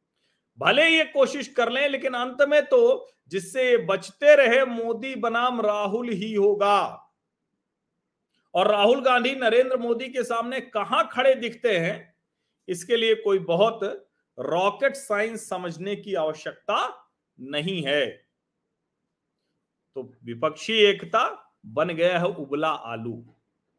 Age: 40-59